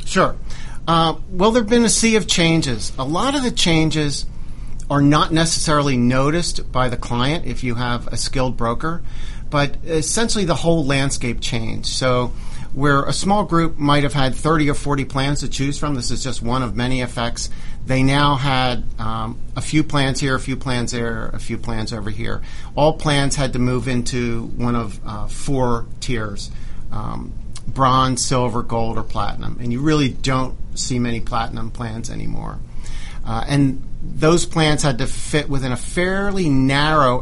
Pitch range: 120-155 Hz